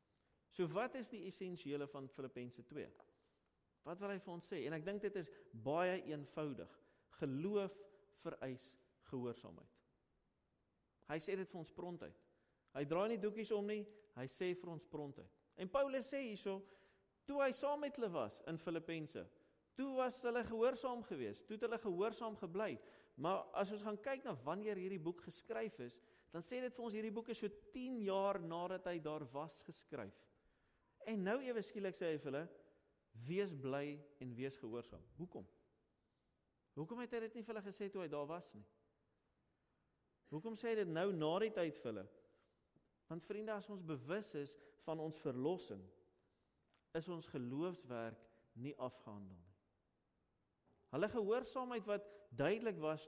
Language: English